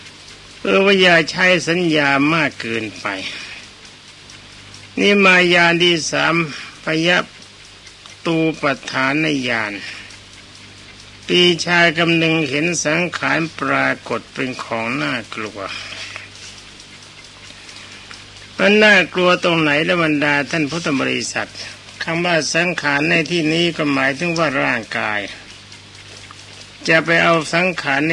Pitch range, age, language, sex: 105-160 Hz, 60-79, Thai, male